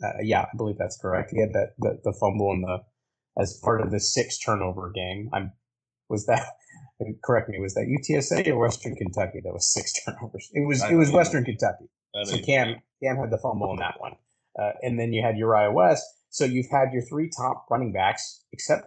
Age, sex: 30-49, male